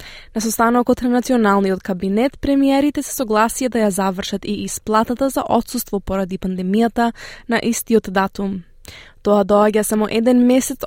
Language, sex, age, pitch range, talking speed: English, female, 20-39, 205-255 Hz, 140 wpm